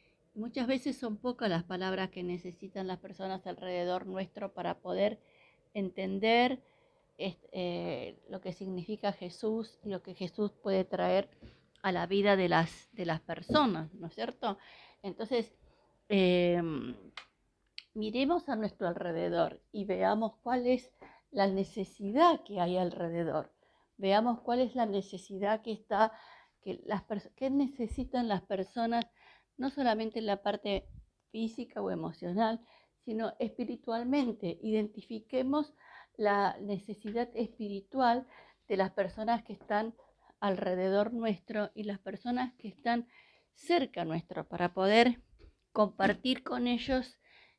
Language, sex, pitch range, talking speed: Spanish, female, 190-240 Hz, 125 wpm